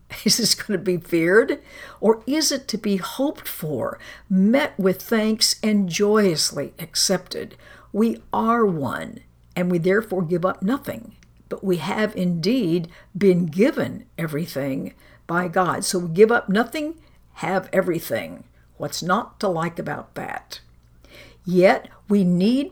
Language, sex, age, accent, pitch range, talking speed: English, female, 60-79, American, 175-220 Hz, 140 wpm